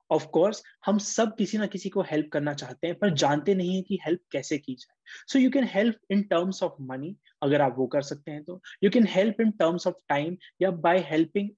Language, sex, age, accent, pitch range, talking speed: English, male, 20-39, Indian, 150-200 Hz, 220 wpm